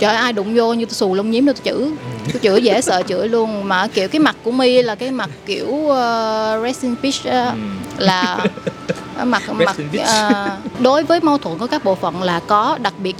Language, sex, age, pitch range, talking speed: Vietnamese, female, 20-39, 210-270 Hz, 215 wpm